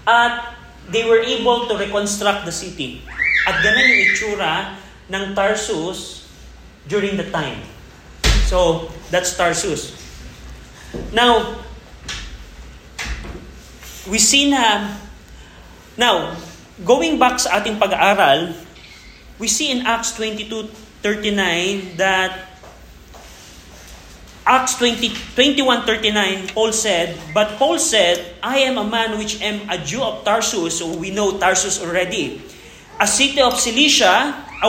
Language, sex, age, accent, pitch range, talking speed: Filipino, male, 30-49, native, 185-240 Hz, 105 wpm